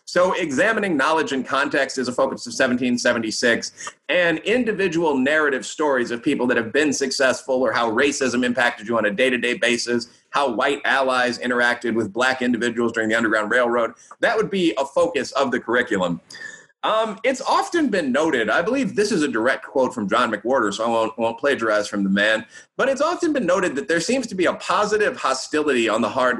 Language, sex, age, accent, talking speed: English, male, 30-49, American, 200 wpm